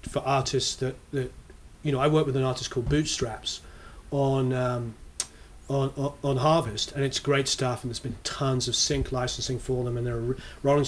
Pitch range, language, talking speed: 120-145 Hz, English, 195 wpm